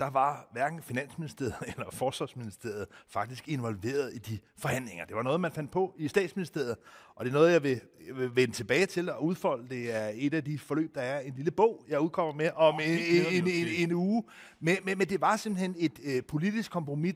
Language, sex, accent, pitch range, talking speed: Danish, male, native, 140-180 Hz, 220 wpm